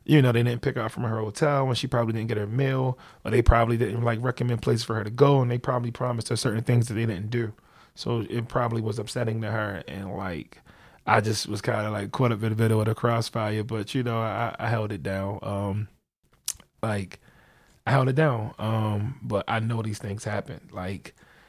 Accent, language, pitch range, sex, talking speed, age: American, English, 110-130 Hz, male, 235 wpm, 20-39